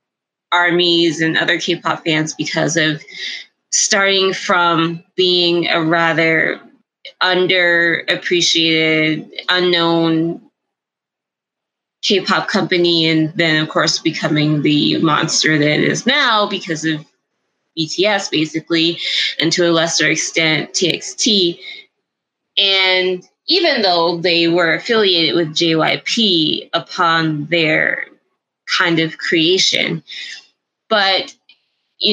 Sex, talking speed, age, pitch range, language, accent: female, 100 wpm, 20-39, 160-195 Hz, English, American